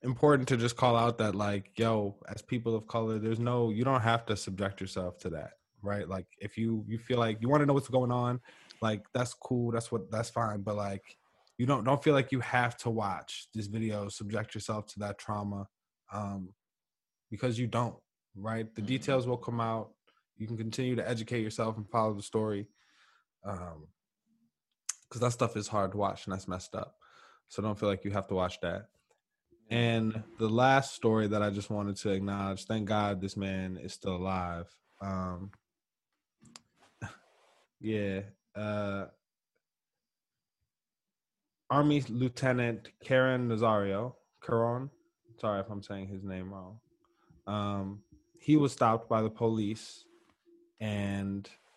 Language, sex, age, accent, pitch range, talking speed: English, male, 20-39, American, 100-120 Hz, 165 wpm